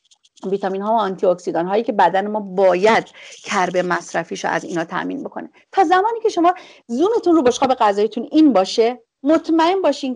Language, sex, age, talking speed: Persian, female, 40-59, 165 wpm